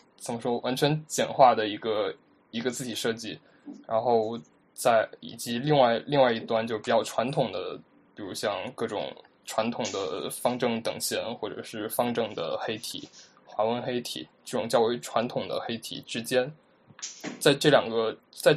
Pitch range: 120-145 Hz